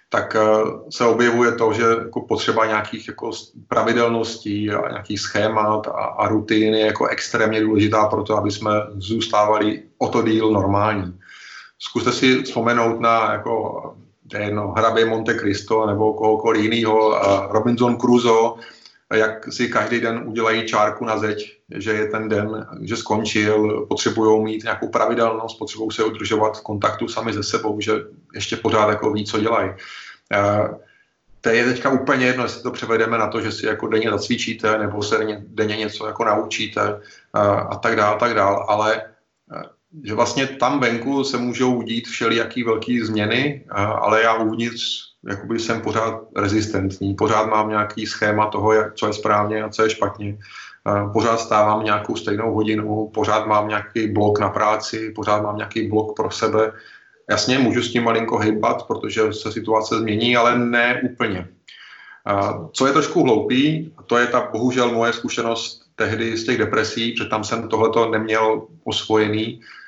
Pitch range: 105-115 Hz